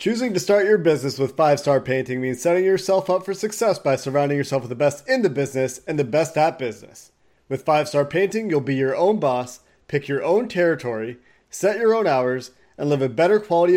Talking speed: 215 wpm